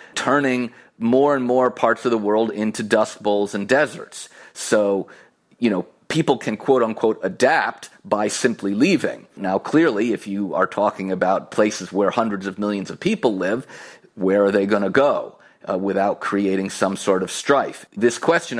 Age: 30-49